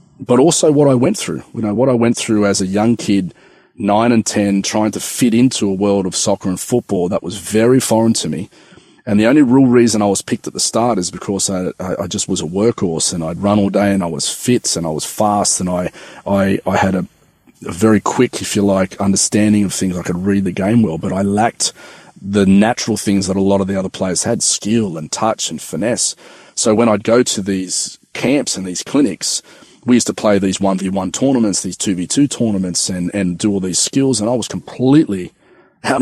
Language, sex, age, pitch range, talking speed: English, male, 30-49, 95-115 Hz, 230 wpm